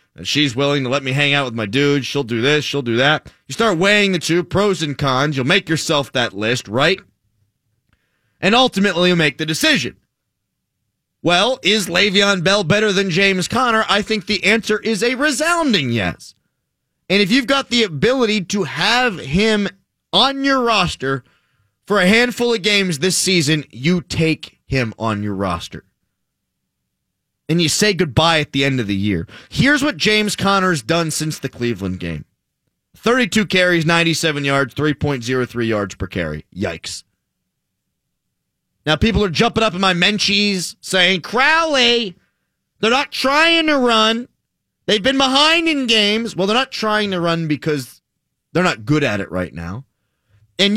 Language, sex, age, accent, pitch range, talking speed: English, male, 30-49, American, 135-210 Hz, 165 wpm